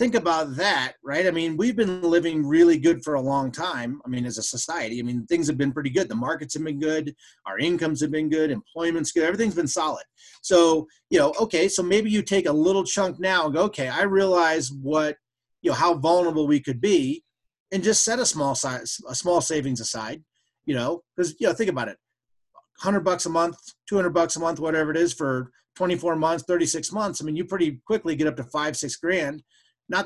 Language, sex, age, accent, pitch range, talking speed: English, male, 30-49, American, 140-180 Hz, 225 wpm